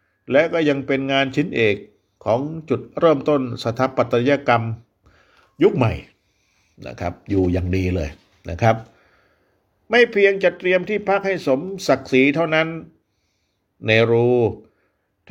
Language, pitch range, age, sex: Thai, 95-135 Hz, 60-79, male